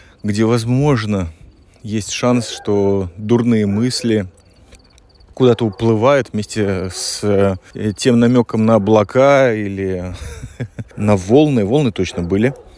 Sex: male